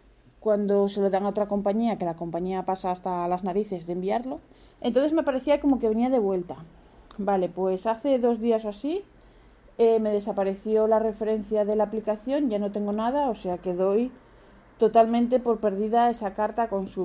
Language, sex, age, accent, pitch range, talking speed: Spanish, female, 20-39, Spanish, 185-235 Hz, 190 wpm